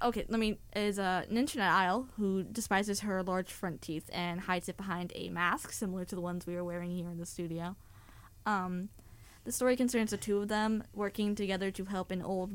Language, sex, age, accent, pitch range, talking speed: English, female, 10-29, American, 175-210 Hz, 225 wpm